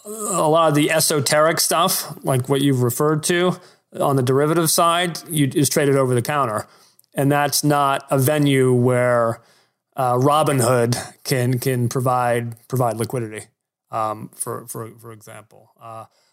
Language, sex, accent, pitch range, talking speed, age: English, male, American, 125-150 Hz, 145 wpm, 30-49